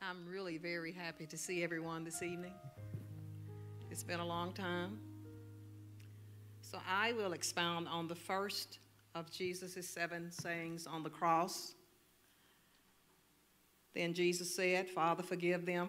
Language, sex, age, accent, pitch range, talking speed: English, female, 50-69, American, 165-180 Hz, 130 wpm